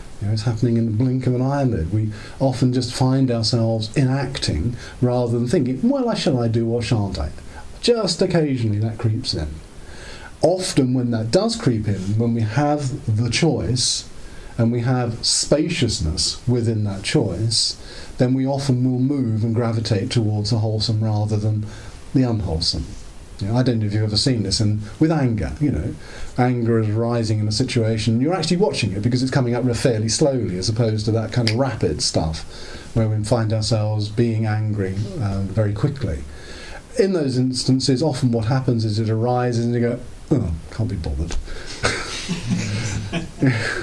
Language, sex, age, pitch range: English, male, 40-59, 110-130 Hz